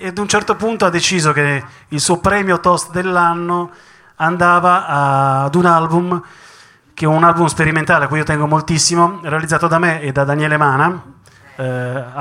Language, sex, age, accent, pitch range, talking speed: Italian, male, 30-49, native, 135-165 Hz, 170 wpm